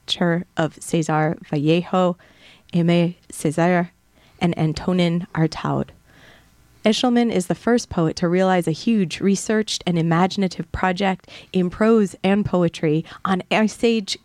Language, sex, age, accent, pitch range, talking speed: English, female, 30-49, American, 160-195 Hz, 115 wpm